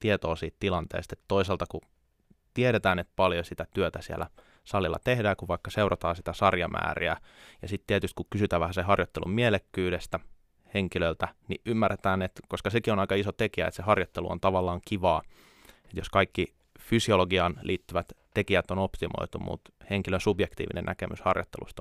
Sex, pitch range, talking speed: male, 85-100 Hz, 150 wpm